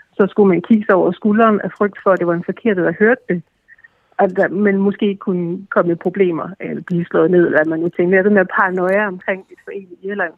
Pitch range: 180-215 Hz